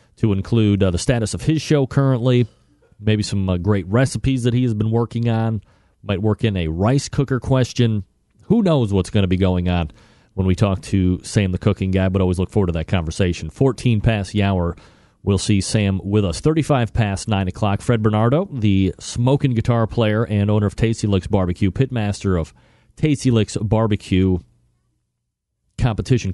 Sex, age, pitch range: male, 40-59, 95-120 Hz